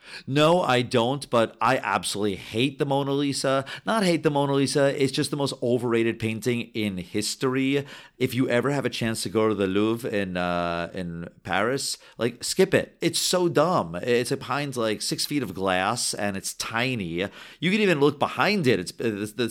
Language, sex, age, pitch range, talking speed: English, male, 40-59, 100-135 Hz, 195 wpm